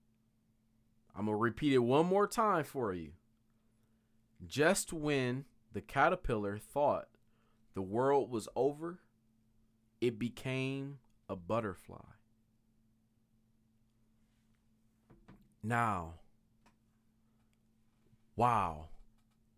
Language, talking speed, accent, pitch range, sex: English, 75 wpm, American, 110-150 Hz, male